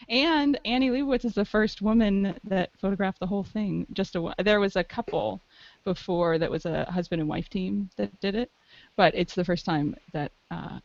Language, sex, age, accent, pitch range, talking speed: English, female, 20-39, American, 180-245 Hz, 200 wpm